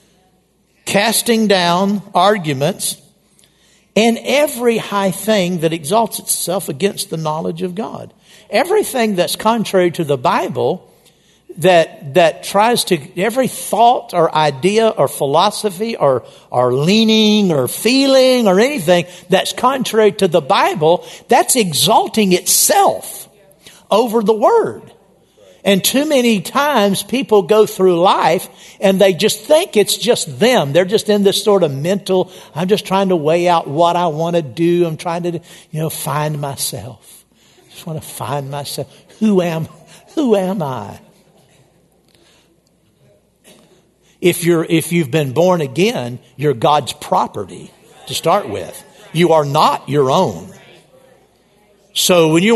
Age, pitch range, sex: 60-79, 165-215 Hz, male